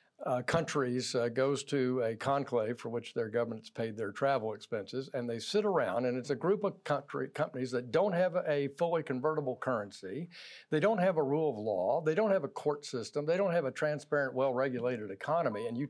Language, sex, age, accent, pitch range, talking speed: English, male, 60-79, American, 125-170 Hz, 210 wpm